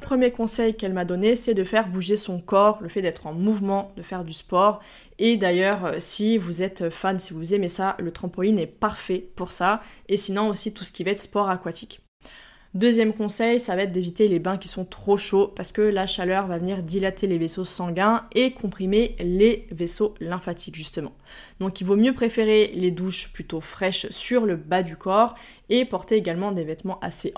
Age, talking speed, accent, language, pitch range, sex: 20-39, 205 wpm, French, French, 180-210 Hz, female